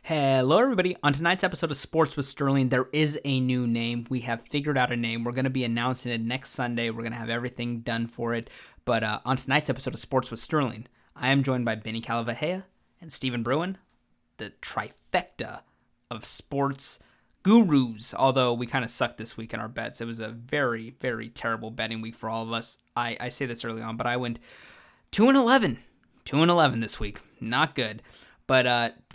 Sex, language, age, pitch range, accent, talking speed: male, English, 20-39, 115-140 Hz, American, 200 wpm